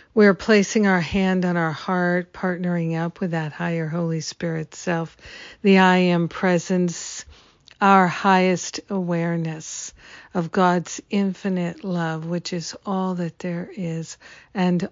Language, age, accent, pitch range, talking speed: English, 50-69, American, 165-190 Hz, 135 wpm